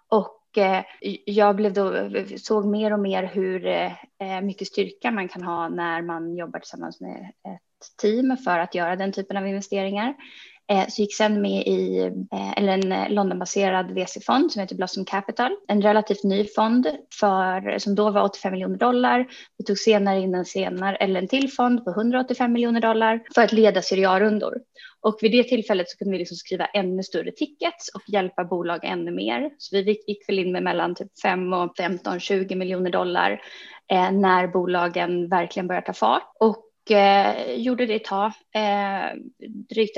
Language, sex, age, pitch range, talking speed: Swedish, female, 20-39, 185-220 Hz, 170 wpm